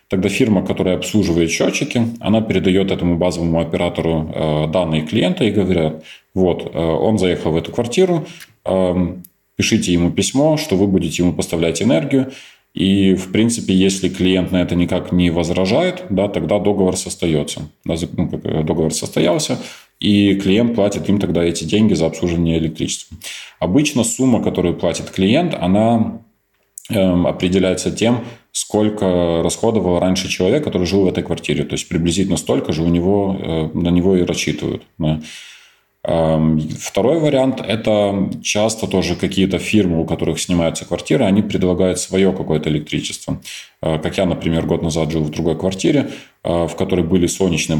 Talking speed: 140 wpm